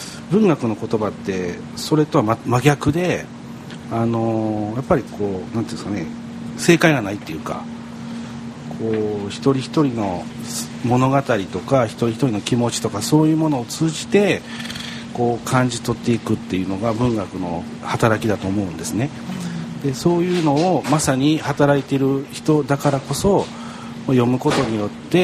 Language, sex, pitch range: Japanese, male, 105-150 Hz